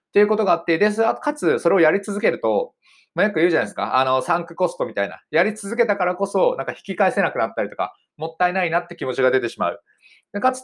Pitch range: 155-210 Hz